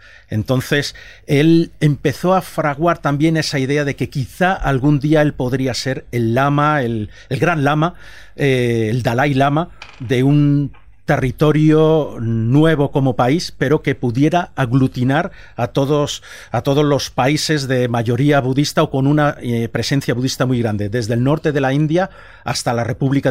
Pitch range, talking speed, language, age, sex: 115-150 Hz, 160 wpm, Spanish, 40-59, male